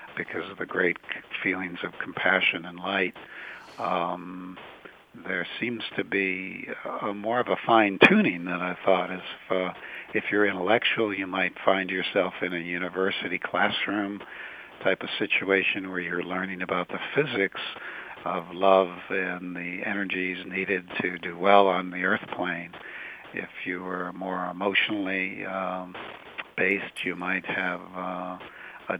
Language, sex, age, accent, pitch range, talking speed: English, male, 60-79, American, 90-95 Hz, 145 wpm